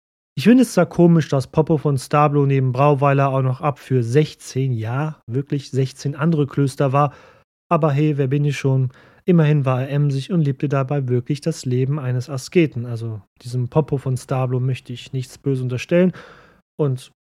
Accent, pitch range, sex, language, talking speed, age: German, 125-145 Hz, male, German, 175 wpm, 30-49